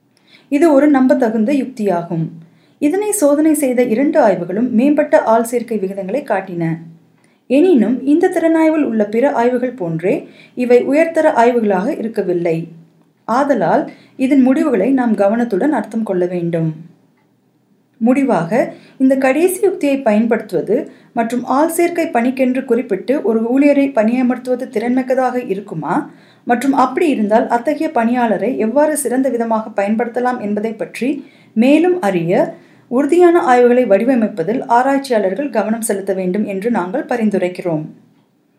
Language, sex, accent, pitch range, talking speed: Tamil, female, native, 210-275 Hz, 110 wpm